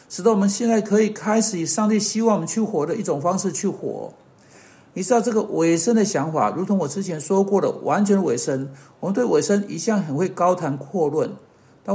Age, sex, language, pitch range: 60-79, male, Chinese, 170-215 Hz